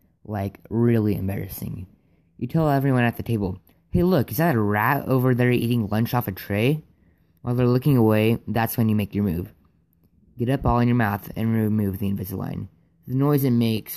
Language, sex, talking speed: English, female, 200 wpm